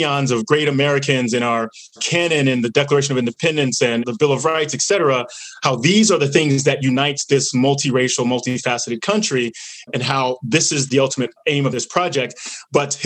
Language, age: English, 30-49